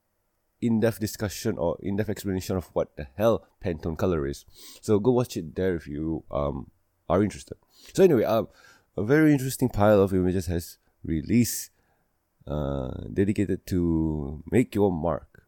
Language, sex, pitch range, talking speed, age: English, male, 80-105 Hz, 150 wpm, 20-39